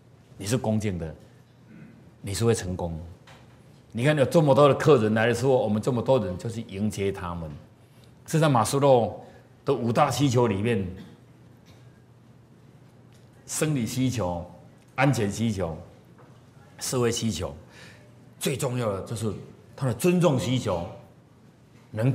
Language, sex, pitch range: Chinese, male, 110-145 Hz